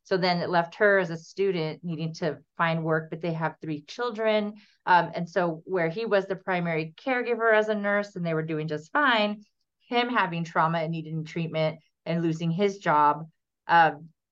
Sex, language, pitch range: female, English, 165-210 Hz